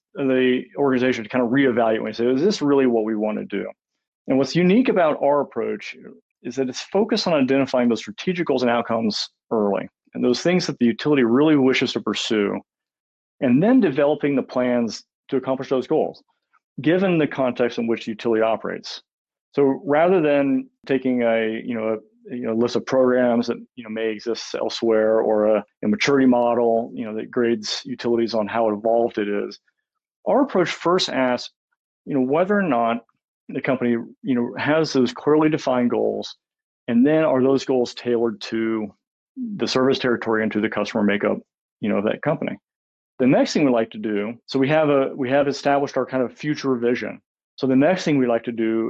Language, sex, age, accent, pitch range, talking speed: English, male, 40-59, American, 115-145 Hz, 200 wpm